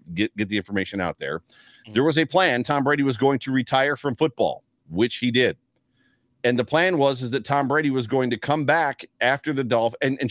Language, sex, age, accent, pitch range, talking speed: English, male, 40-59, American, 115-140 Hz, 225 wpm